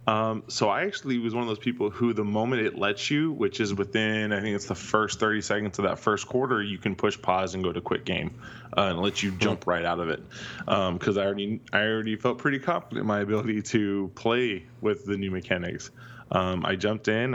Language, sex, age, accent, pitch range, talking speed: English, male, 20-39, American, 95-115 Hz, 240 wpm